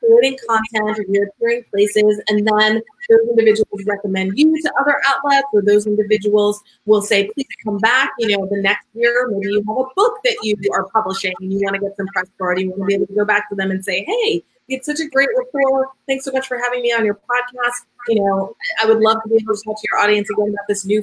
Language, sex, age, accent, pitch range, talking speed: English, female, 30-49, American, 200-255 Hz, 255 wpm